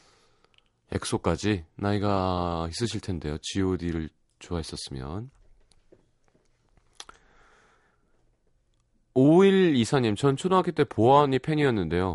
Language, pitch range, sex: Korean, 80-130 Hz, male